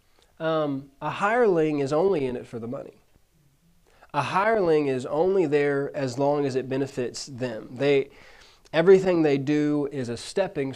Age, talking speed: 20-39, 155 wpm